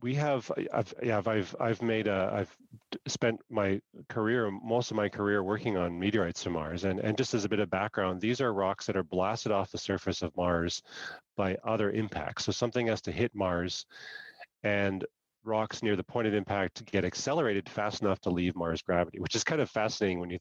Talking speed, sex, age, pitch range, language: 210 wpm, male, 30-49, 95-115 Hz, English